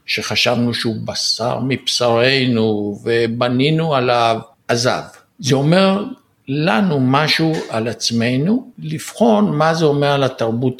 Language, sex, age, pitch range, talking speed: Hebrew, male, 60-79, 120-160 Hz, 105 wpm